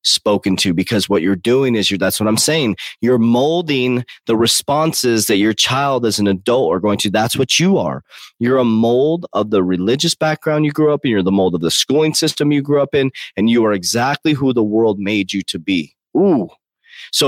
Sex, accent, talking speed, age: male, American, 220 wpm, 30-49